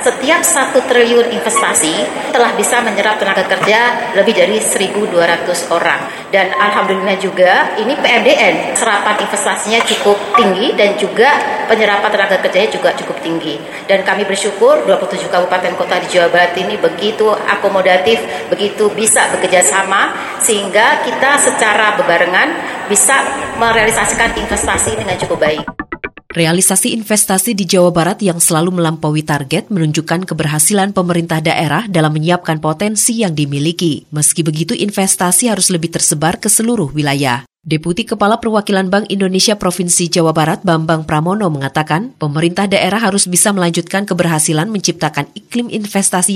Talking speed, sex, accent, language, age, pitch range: 130 wpm, female, native, Indonesian, 30-49, 170-210 Hz